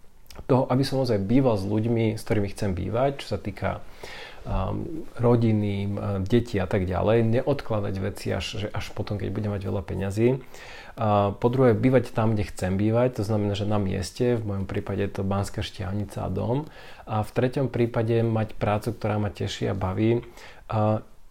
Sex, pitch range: male, 100-120 Hz